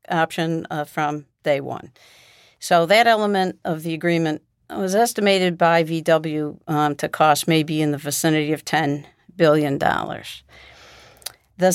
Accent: American